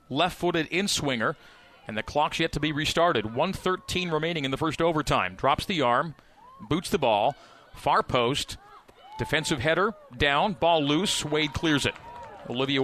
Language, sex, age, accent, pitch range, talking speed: English, male, 40-59, American, 135-185 Hz, 150 wpm